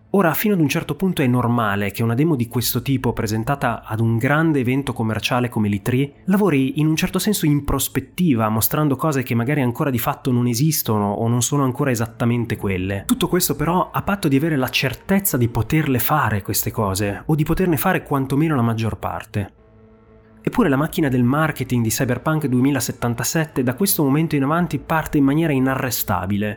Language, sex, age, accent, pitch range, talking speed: Italian, male, 30-49, native, 115-155 Hz, 185 wpm